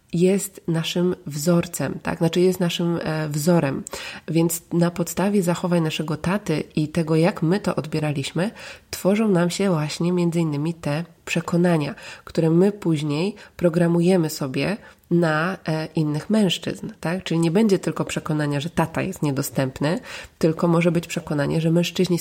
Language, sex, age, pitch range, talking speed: Polish, female, 20-39, 155-185 Hz, 145 wpm